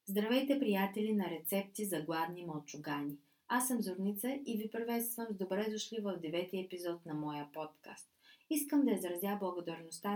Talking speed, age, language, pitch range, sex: 155 wpm, 30-49, Bulgarian, 170-235 Hz, female